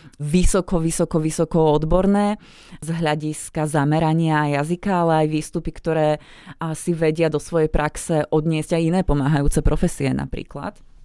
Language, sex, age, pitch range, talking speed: Slovak, female, 20-39, 150-170 Hz, 125 wpm